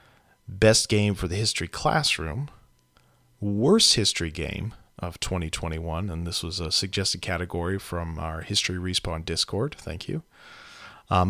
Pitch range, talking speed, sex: 85-115 Hz, 135 wpm, male